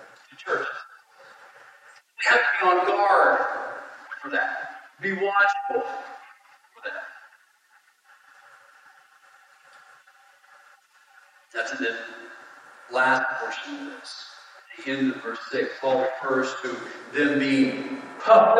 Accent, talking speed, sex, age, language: American, 95 wpm, male, 40-59, English